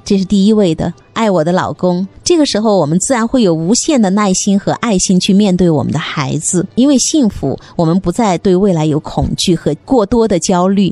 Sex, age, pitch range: female, 20-39, 175-240 Hz